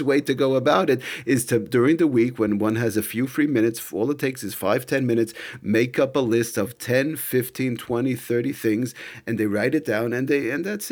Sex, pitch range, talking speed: male, 110-135 Hz, 235 wpm